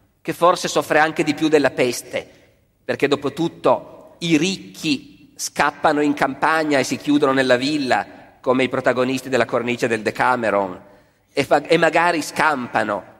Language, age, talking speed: Italian, 40-59, 140 wpm